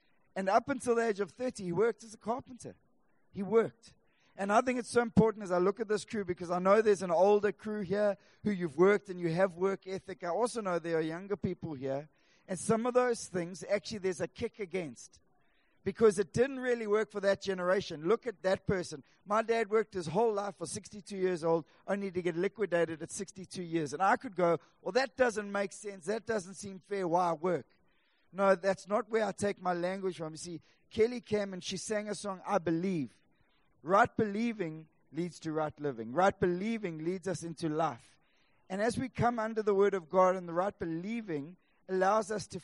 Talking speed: 215 wpm